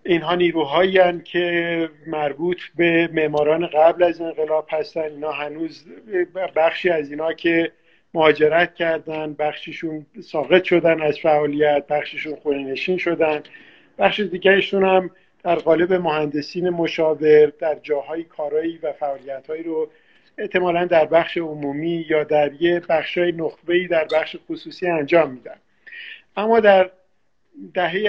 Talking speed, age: 125 wpm, 50-69